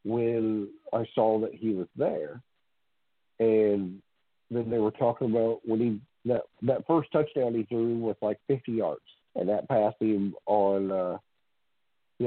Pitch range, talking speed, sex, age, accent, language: 100-120 Hz, 155 wpm, male, 50-69, American, English